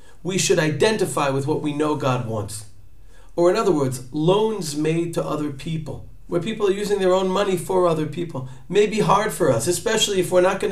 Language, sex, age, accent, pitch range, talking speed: English, male, 50-69, American, 125-175 Hz, 215 wpm